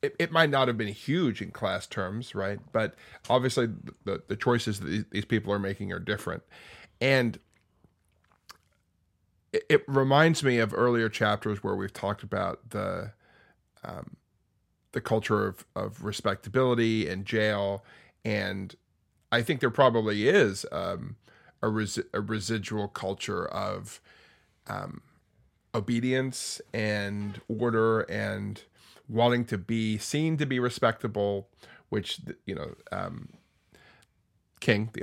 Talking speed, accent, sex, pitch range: 125 wpm, American, male, 100-120 Hz